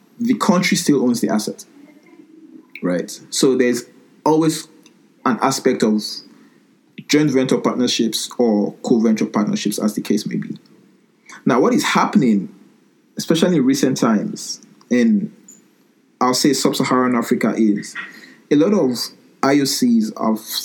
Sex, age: male, 20-39